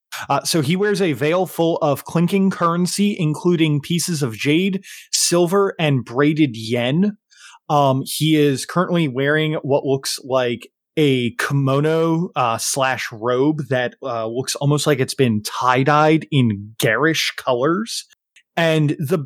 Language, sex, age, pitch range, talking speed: English, male, 20-39, 135-175 Hz, 135 wpm